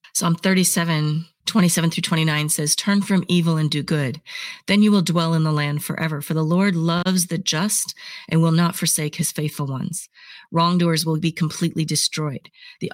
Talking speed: 180 wpm